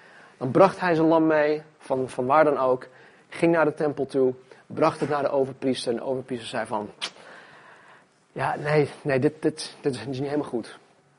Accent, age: Dutch, 30-49